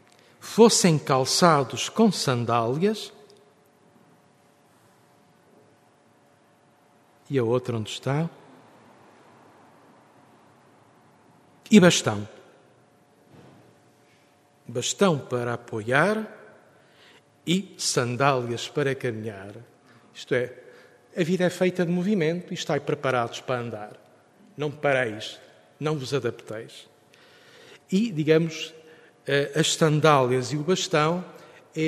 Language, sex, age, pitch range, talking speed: Portuguese, male, 50-69, 125-165 Hz, 85 wpm